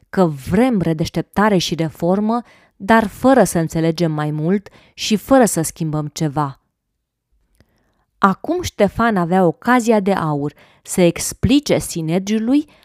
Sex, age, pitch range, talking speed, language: female, 20-39, 160-210 Hz, 115 wpm, Romanian